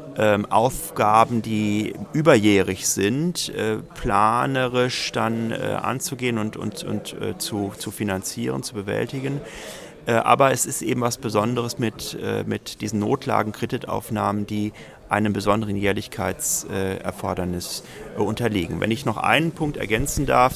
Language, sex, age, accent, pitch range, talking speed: German, male, 40-59, German, 105-125 Hz, 110 wpm